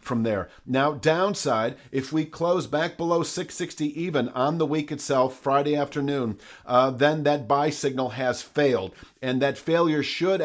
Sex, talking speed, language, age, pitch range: male, 160 wpm, English, 40-59, 135-160 Hz